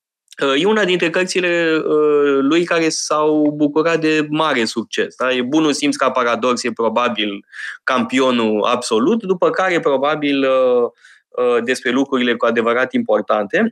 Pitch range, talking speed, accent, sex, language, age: 130-170 Hz, 125 wpm, native, male, Romanian, 20-39